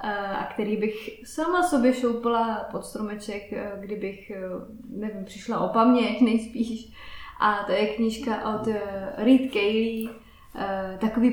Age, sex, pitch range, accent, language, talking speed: 20-39, female, 215-245 Hz, native, Czech, 115 wpm